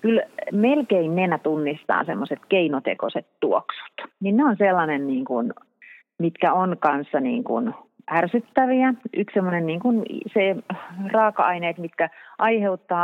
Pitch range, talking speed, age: 145-185 Hz, 125 wpm, 30-49